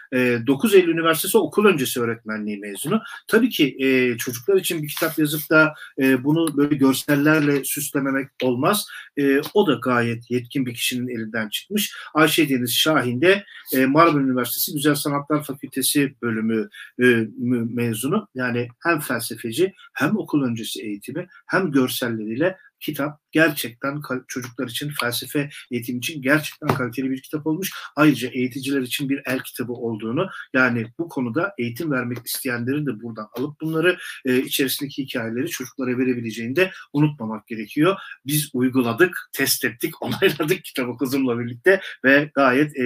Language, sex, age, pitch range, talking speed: Turkish, male, 50-69, 125-155 Hz, 135 wpm